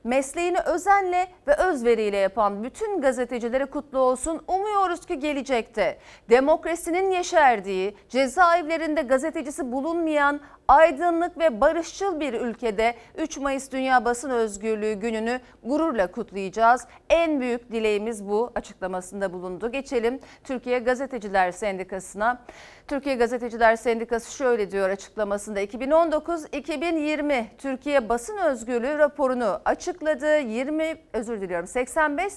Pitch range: 225-310 Hz